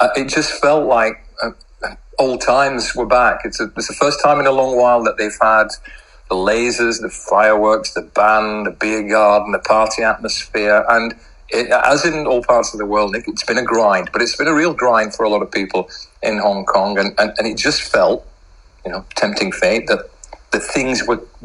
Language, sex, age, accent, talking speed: English, male, 40-59, British, 210 wpm